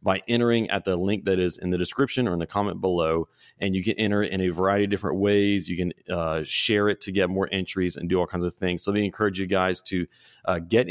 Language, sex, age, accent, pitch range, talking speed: English, male, 30-49, American, 85-100 Hz, 265 wpm